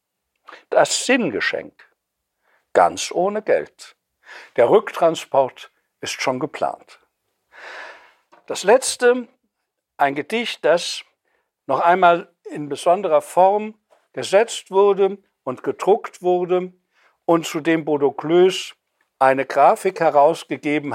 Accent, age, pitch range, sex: German, 60-79, 150-235 Hz, male